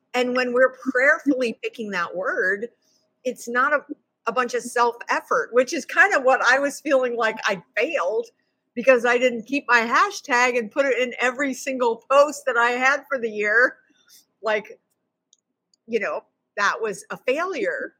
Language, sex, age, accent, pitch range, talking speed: English, female, 50-69, American, 225-280 Hz, 170 wpm